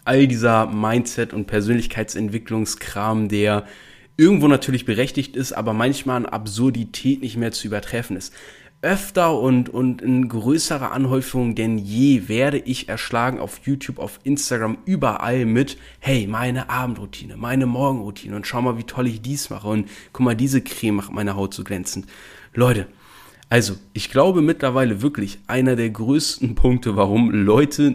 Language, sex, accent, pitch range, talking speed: German, male, German, 115-140 Hz, 150 wpm